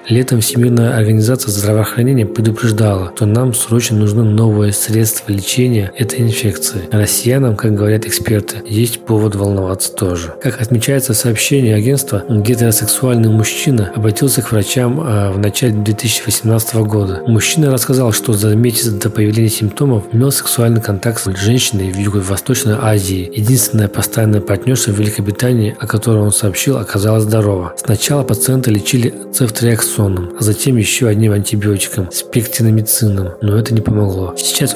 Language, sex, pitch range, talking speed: Russian, male, 105-120 Hz, 135 wpm